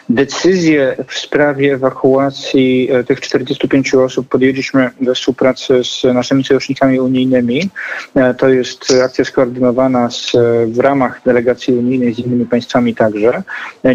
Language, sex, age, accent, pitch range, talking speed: Polish, male, 40-59, native, 125-135 Hz, 130 wpm